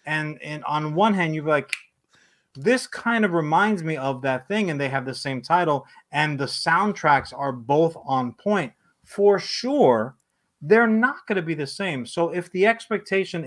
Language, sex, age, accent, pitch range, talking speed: English, male, 30-49, American, 140-185 Hz, 185 wpm